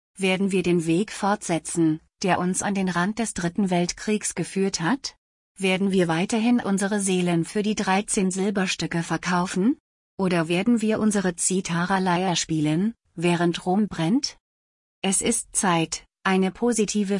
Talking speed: 135 wpm